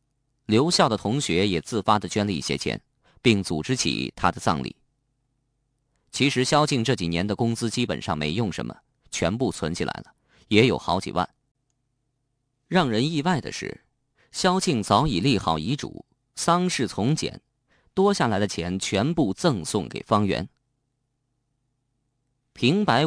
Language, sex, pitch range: Chinese, male, 105-135 Hz